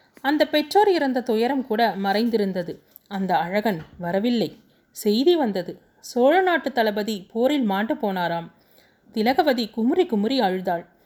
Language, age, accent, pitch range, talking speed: Tamil, 30-49, native, 200-270 Hz, 110 wpm